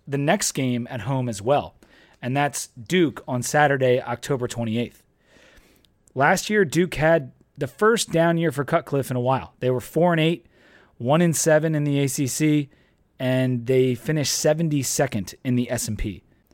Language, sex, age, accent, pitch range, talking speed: English, male, 30-49, American, 115-155 Hz, 165 wpm